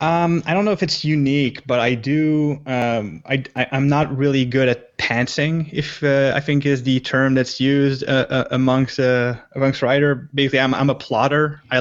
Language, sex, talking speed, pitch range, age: English, male, 195 wpm, 115-135 Hz, 20-39